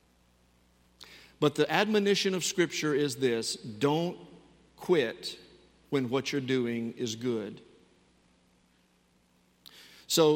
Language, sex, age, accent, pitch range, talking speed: English, male, 50-69, American, 125-175 Hz, 95 wpm